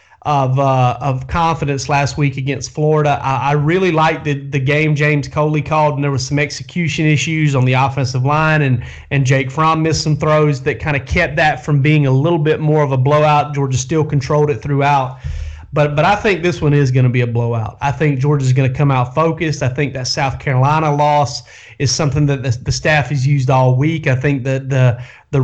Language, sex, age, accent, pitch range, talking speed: English, male, 30-49, American, 135-160 Hz, 230 wpm